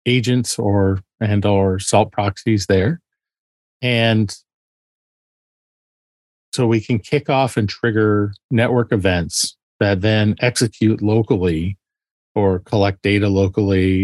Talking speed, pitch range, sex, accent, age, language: 105 wpm, 105-120 Hz, male, American, 40-59, English